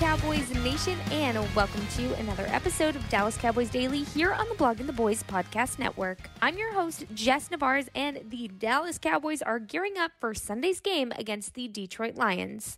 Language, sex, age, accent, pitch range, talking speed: English, female, 20-39, American, 220-305 Hz, 185 wpm